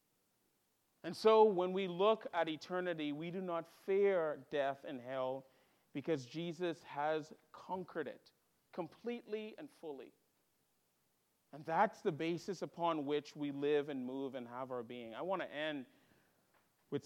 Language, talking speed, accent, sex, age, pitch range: English, 145 wpm, American, male, 40-59, 140-170 Hz